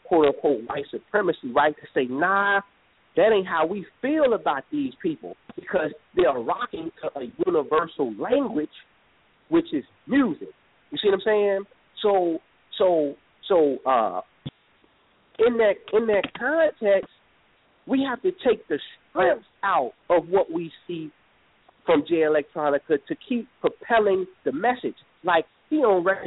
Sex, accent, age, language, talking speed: male, American, 40-59, English, 145 wpm